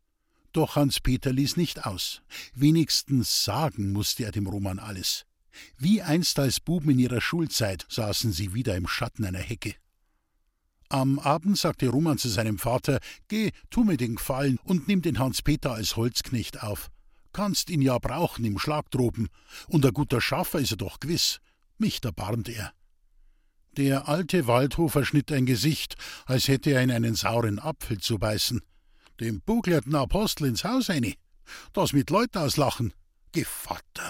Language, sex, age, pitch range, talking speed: German, male, 50-69, 110-150 Hz, 155 wpm